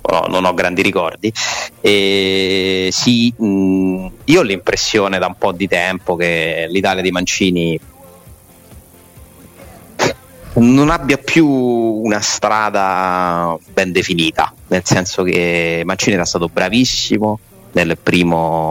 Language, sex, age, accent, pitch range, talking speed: Italian, male, 30-49, native, 85-100 Hz, 110 wpm